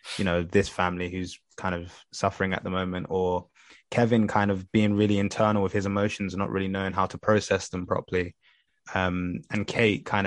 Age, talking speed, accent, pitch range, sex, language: 20-39, 200 wpm, British, 95-110 Hz, male, English